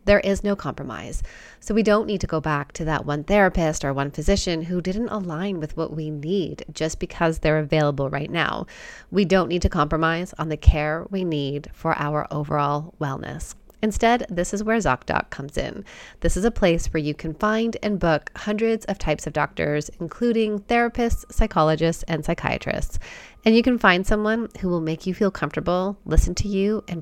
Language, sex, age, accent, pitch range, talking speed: English, female, 30-49, American, 155-200 Hz, 195 wpm